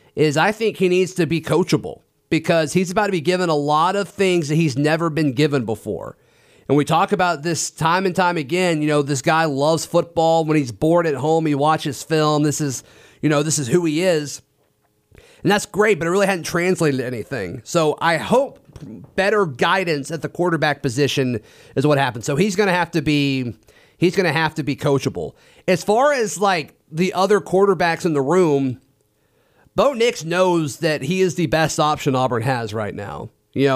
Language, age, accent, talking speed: English, 30-49, American, 205 wpm